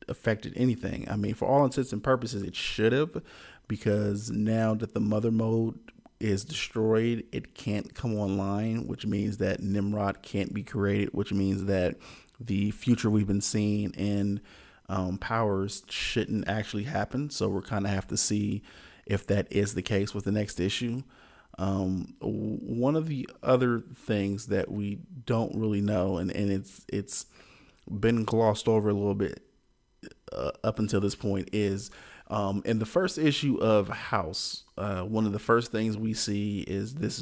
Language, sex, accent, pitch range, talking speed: English, male, American, 100-115 Hz, 170 wpm